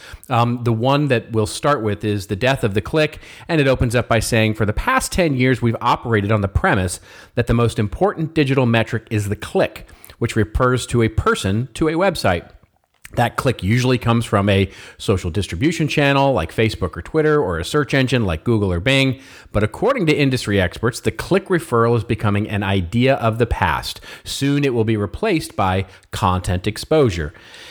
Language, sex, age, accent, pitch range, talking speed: English, male, 40-59, American, 95-120 Hz, 195 wpm